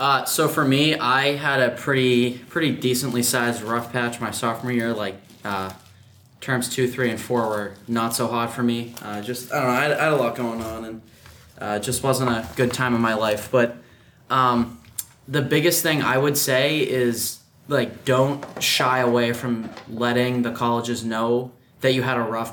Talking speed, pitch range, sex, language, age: 200 wpm, 115-130 Hz, male, English, 10-29